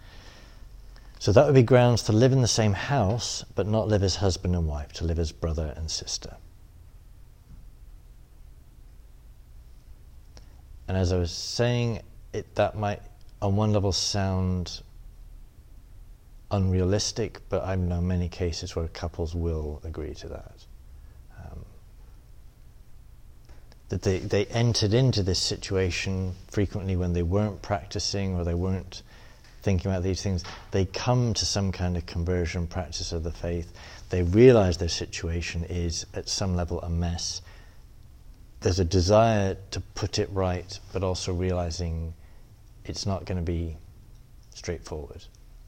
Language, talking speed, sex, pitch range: English, 140 wpm, male, 85-100 Hz